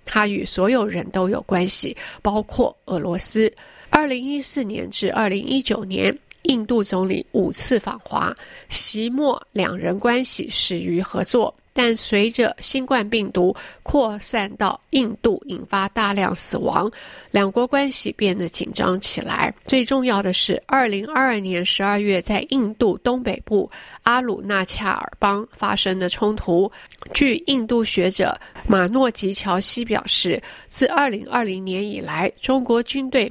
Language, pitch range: Chinese, 195-250 Hz